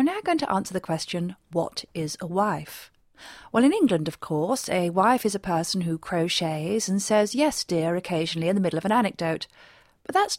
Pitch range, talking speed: 165-225 Hz, 200 wpm